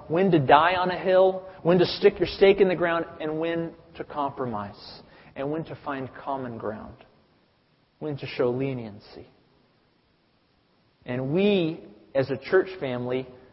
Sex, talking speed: male, 150 wpm